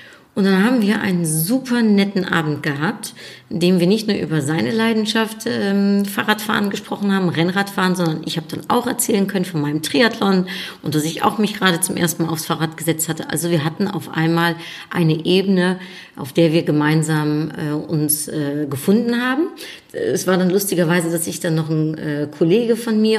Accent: German